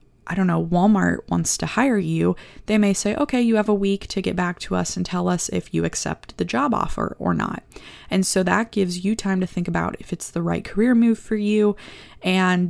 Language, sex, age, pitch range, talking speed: English, female, 20-39, 155-195 Hz, 235 wpm